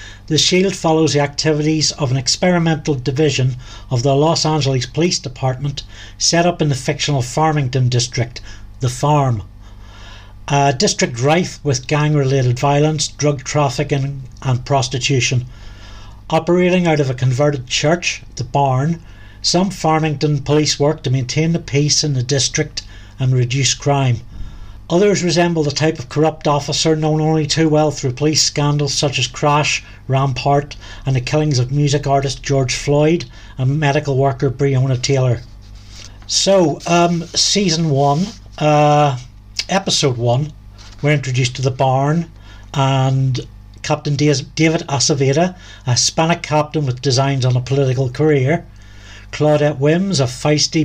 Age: 60-79